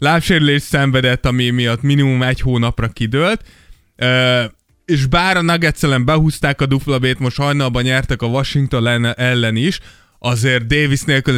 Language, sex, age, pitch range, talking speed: Hungarian, male, 20-39, 120-150 Hz, 135 wpm